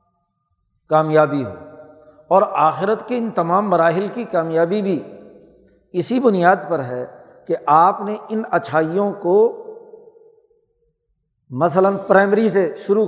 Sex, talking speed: male, 115 wpm